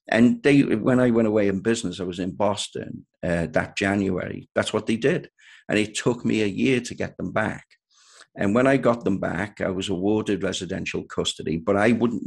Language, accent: English, British